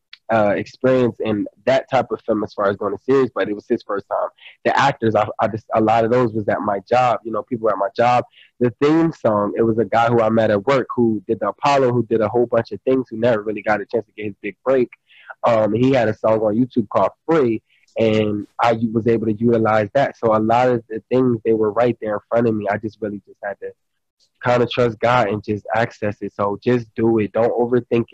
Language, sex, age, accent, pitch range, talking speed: English, male, 20-39, American, 110-135 Hz, 260 wpm